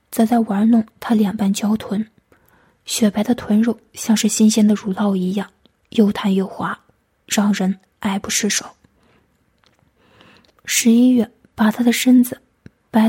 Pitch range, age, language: 210-235 Hz, 20-39, Chinese